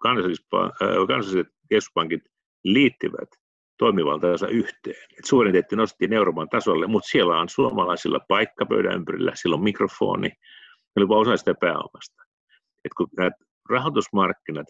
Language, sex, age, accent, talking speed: Finnish, male, 50-69, native, 115 wpm